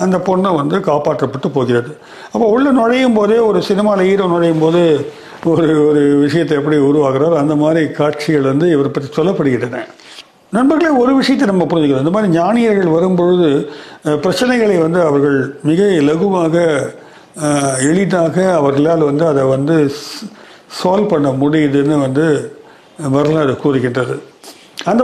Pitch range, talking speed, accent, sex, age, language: 145-200 Hz, 125 wpm, native, male, 40-59, Tamil